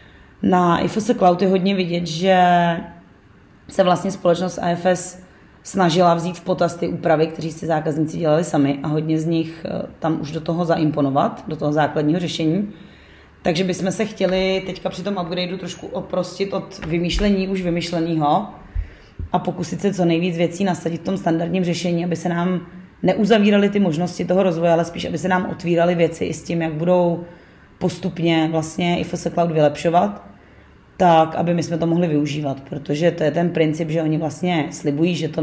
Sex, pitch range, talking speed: female, 160-180 Hz, 180 wpm